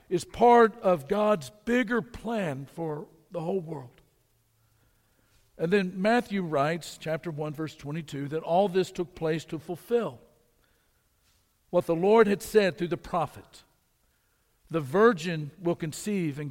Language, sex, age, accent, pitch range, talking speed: English, male, 60-79, American, 145-195 Hz, 140 wpm